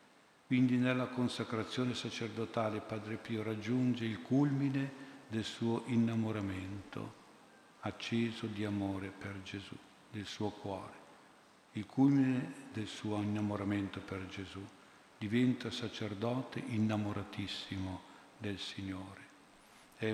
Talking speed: 100 wpm